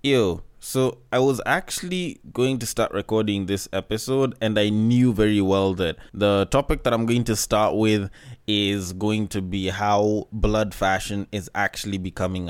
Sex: male